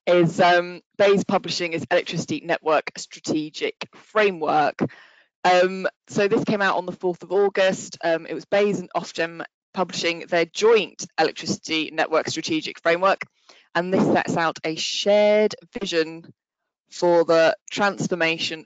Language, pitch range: English, 160-195 Hz